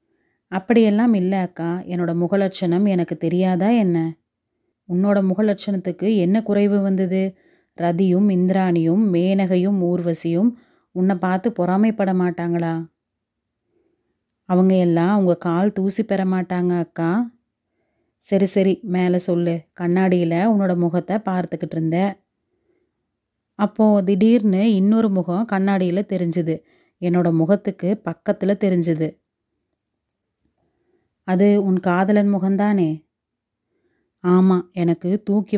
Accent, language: native, Tamil